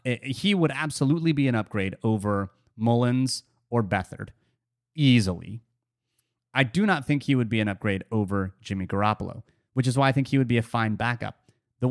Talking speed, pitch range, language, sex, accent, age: 175 wpm, 110-140 Hz, English, male, American, 30-49